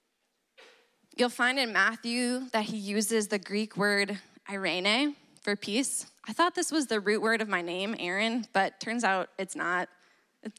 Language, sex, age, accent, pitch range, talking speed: English, female, 20-39, American, 190-220 Hz, 170 wpm